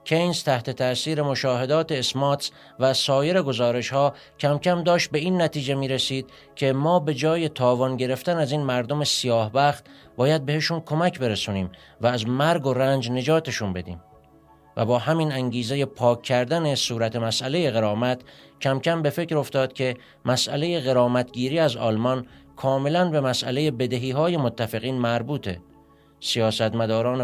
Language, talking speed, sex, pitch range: Persian, 150 wpm, male, 120-150 Hz